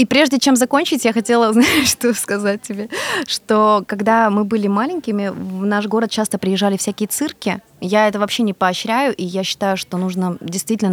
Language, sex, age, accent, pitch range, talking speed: Russian, female, 20-39, native, 190-230 Hz, 180 wpm